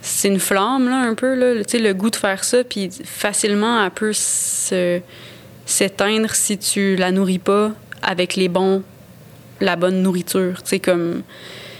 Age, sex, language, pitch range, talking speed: 20-39, female, French, 185-210 Hz, 165 wpm